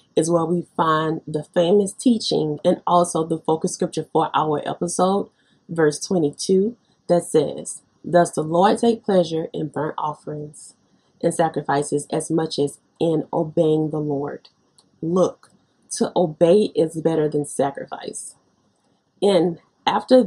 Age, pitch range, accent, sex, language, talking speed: 30-49, 155-185 Hz, American, female, English, 135 wpm